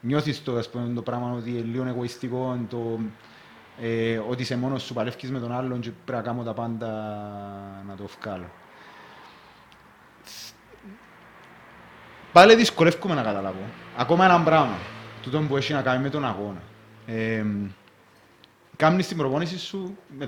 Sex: male